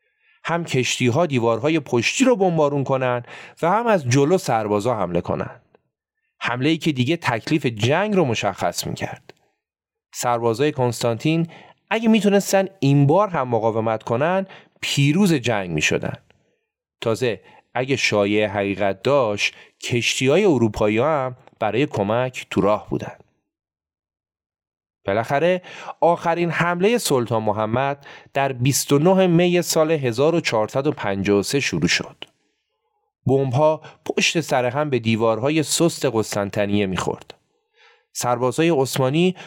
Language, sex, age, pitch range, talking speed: Persian, male, 30-49, 115-160 Hz, 110 wpm